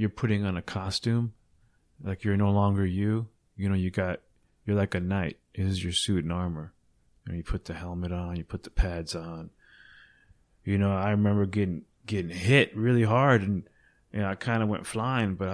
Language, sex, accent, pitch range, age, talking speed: English, male, American, 95-110 Hz, 20-39, 210 wpm